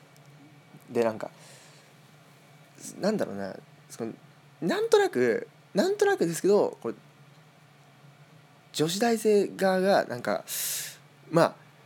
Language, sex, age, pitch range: Japanese, male, 20-39, 135-170 Hz